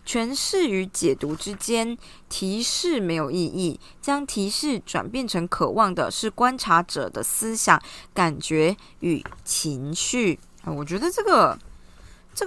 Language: Chinese